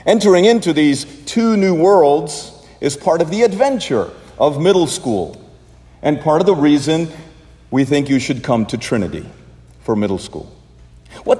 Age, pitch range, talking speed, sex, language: 50-69, 115-180 Hz, 160 wpm, male, English